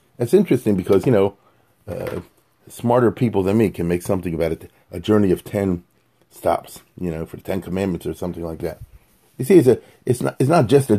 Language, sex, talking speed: English, male, 220 wpm